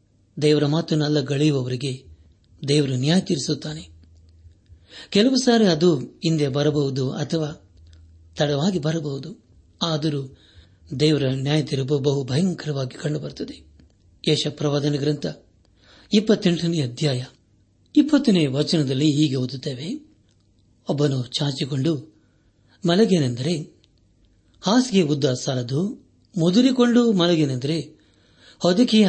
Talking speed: 75 wpm